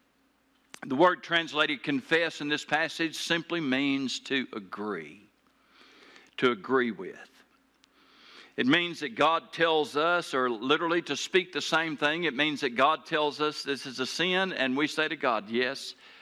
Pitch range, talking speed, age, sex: 150-215 Hz, 160 wpm, 60-79, male